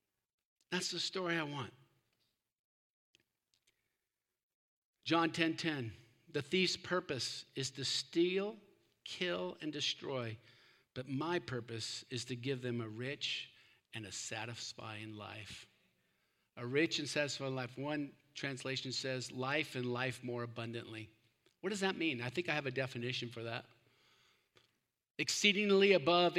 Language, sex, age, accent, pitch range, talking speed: English, male, 50-69, American, 130-210 Hz, 125 wpm